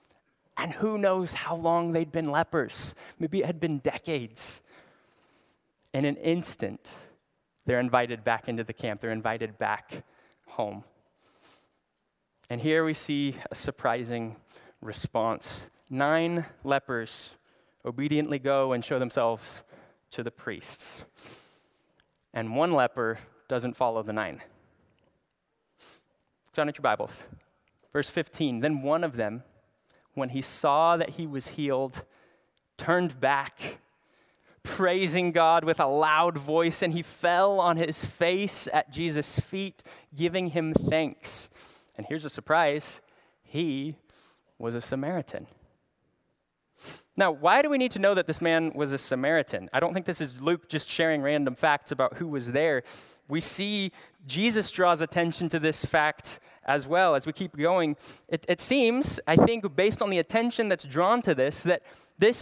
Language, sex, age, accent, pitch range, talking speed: English, male, 20-39, American, 135-175 Hz, 145 wpm